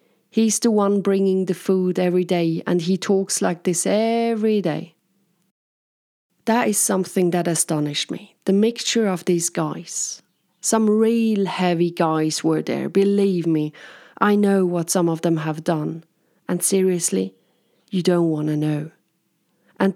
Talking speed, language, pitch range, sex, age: 150 wpm, English, 180-220 Hz, female, 40-59